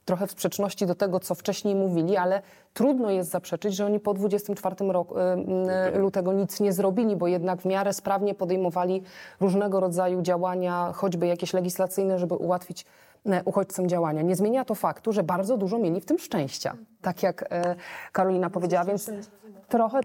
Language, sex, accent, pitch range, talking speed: Polish, female, native, 185-220 Hz, 160 wpm